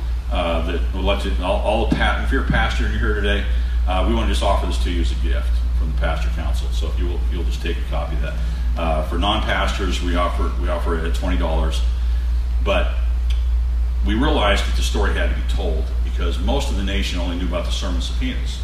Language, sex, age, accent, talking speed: English, male, 40-59, American, 235 wpm